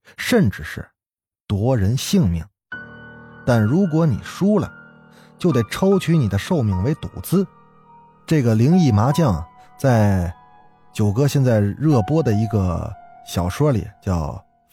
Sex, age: male, 20-39